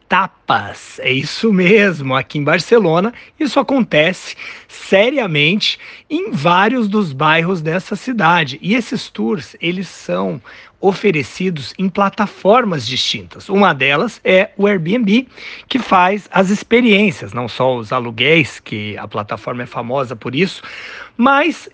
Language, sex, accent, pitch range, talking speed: Portuguese, male, Brazilian, 150-220 Hz, 125 wpm